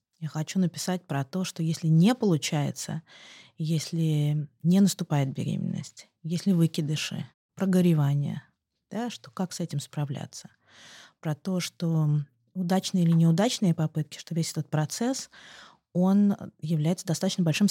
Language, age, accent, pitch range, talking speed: Russian, 20-39, native, 160-205 Hz, 125 wpm